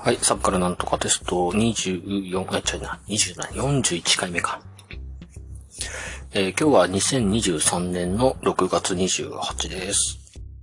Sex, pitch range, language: male, 90-110 Hz, Japanese